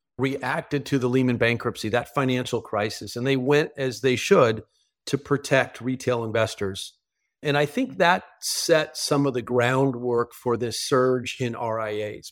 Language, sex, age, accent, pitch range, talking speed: English, male, 40-59, American, 120-145 Hz, 155 wpm